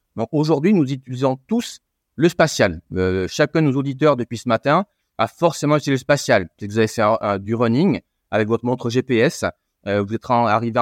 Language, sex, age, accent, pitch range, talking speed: French, male, 30-49, French, 110-135 Hz, 200 wpm